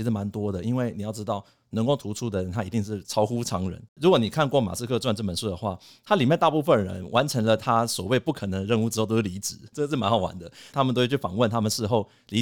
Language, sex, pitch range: Chinese, male, 100-120 Hz